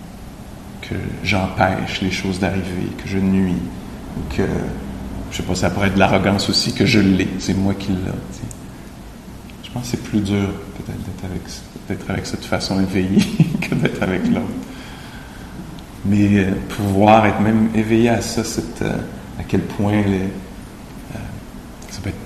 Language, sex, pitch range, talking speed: English, male, 95-110 Hz, 170 wpm